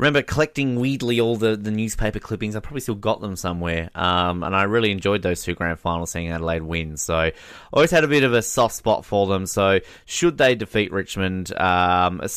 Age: 20-39